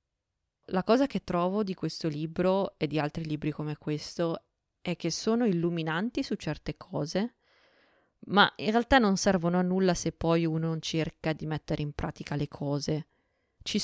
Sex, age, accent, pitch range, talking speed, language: female, 20-39, native, 155-185 Hz, 170 wpm, Italian